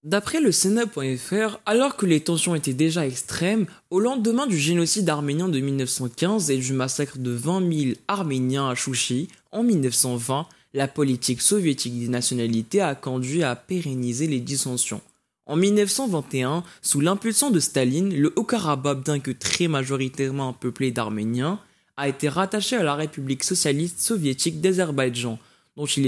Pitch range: 130-175 Hz